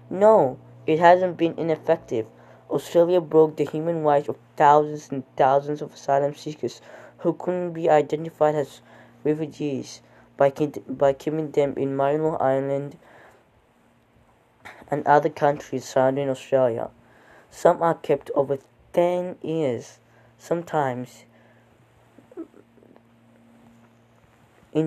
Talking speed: 105 wpm